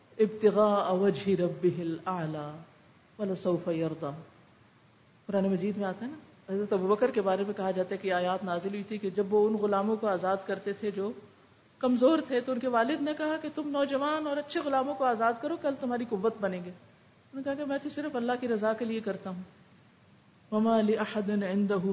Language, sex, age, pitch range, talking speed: Urdu, female, 50-69, 190-240 Hz, 210 wpm